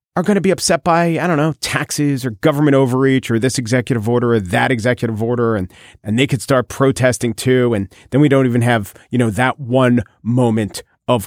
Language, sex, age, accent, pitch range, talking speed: English, male, 40-59, American, 120-165 Hz, 215 wpm